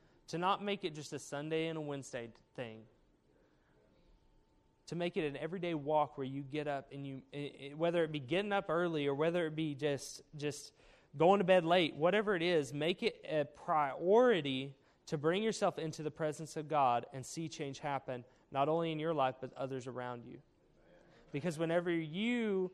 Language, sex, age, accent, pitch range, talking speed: English, male, 20-39, American, 140-175 Hz, 190 wpm